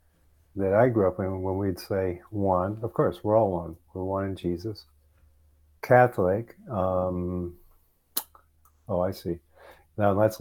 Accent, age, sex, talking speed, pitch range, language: American, 50-69, male, 145 wpm, 85-100 Hz, English